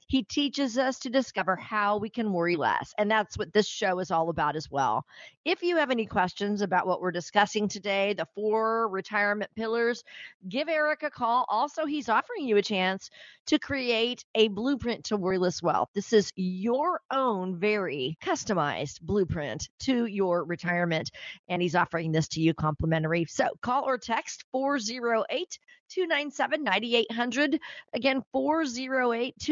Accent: American